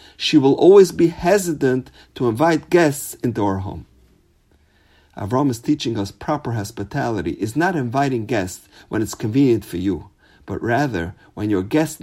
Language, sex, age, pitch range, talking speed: English, male, 50-69, 100-145 Hz, 155 wpm